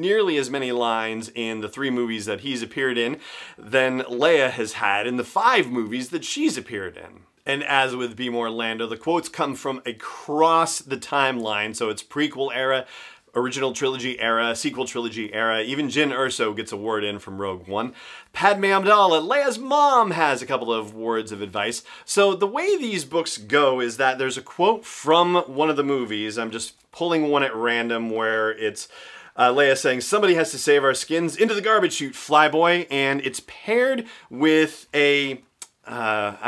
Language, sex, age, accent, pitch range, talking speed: English, male, 30-49, American, 120-155 Hz, 185 wpm